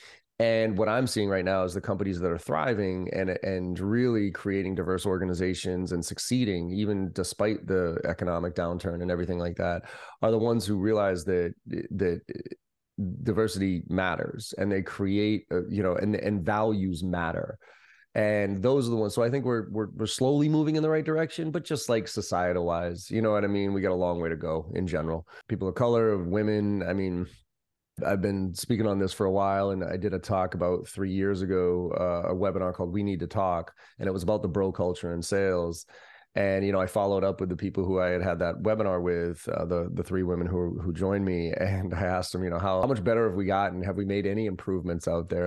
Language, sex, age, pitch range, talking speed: English, male, 30-49, 90-105 Hz, 220 wpm